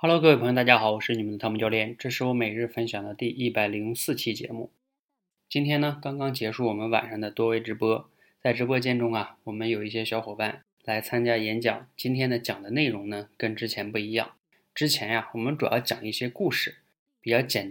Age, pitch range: 20-39, 110-125 Hz